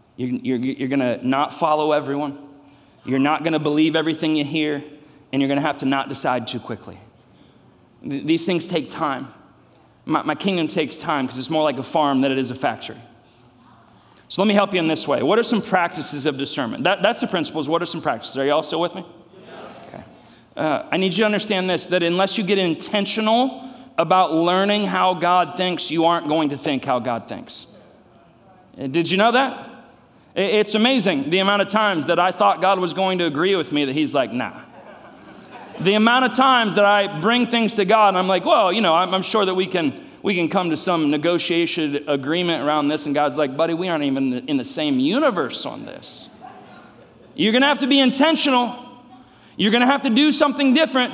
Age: 30-49